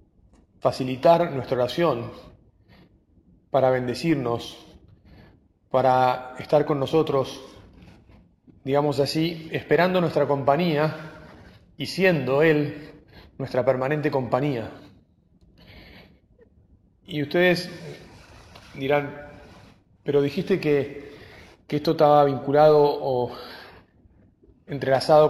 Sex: male